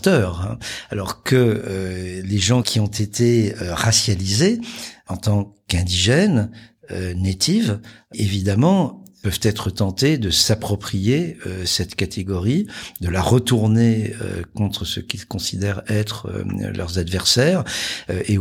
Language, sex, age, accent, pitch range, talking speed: French, male, 50-69, French, 95-115 Hz, 120 wpm